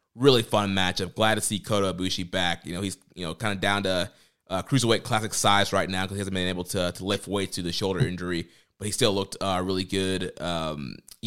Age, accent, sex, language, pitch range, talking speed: 20-39, American, male, English, 90-105 Hz, 240 wpm